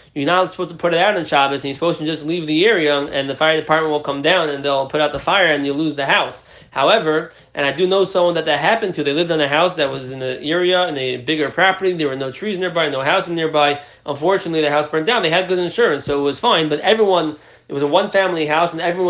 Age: 20-39